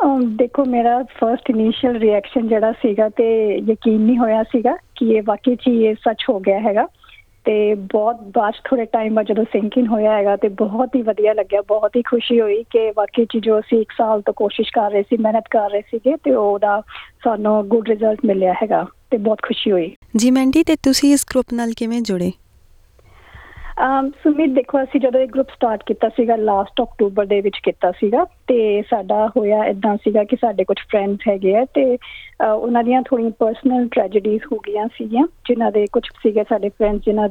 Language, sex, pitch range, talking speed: Punjabi, female, 215-245 Hz, 190 wpm